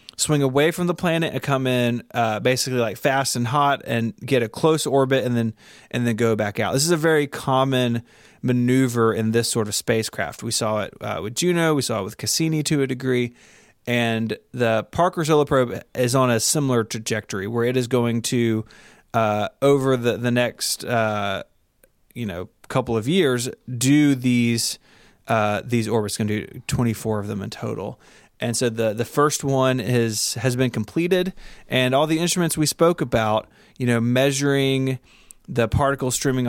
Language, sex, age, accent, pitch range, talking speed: English, male, 30-49, American, 115-135 Hz, 190 wpm